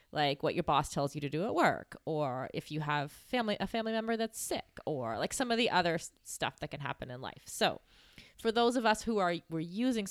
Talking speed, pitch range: 245 wpm, 150-200 Hz